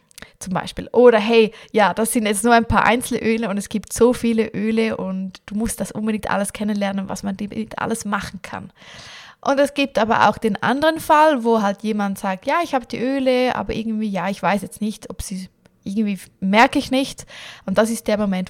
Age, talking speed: 20-39, 215 wpm